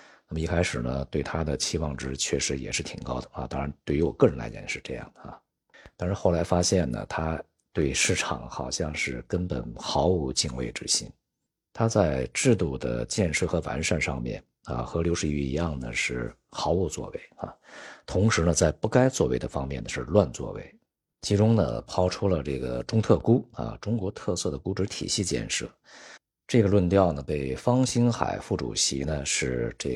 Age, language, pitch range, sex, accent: 50-69, Chinese, 65-95 Hz, male, native